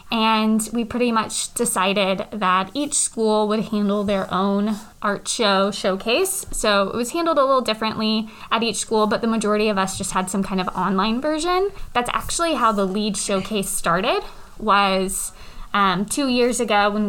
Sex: female